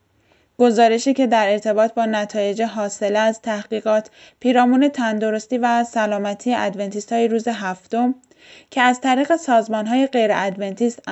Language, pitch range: Persian, 205-250 Hz